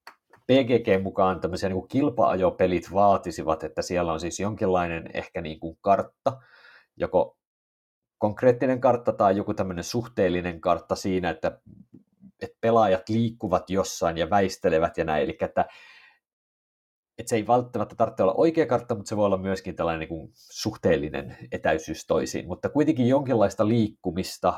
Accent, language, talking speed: native, Finnish, 140 wpm